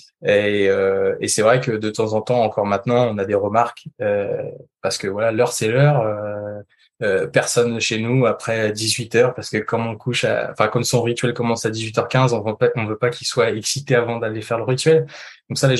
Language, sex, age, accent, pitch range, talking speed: French, male, 20-39, French, 110-130 Hz, 215 wpm